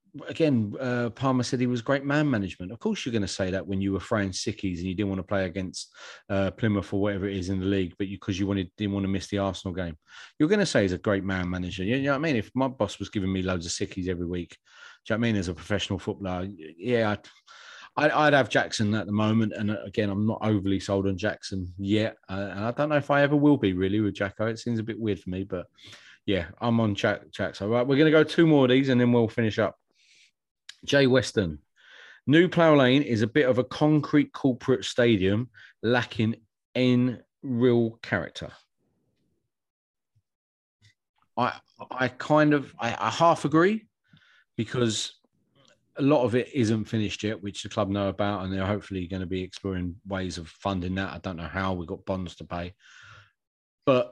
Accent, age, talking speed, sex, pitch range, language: British, 30-49, 220 wpm, male, 95-125 Hz, English